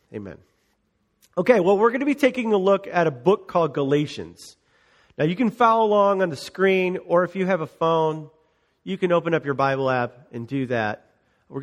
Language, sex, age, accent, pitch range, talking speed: English, male, 40-59, American, 140-195 Hz, 205 wpm